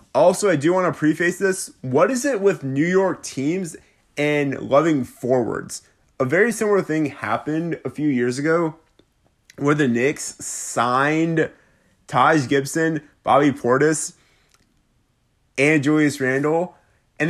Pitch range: 130-160 Hz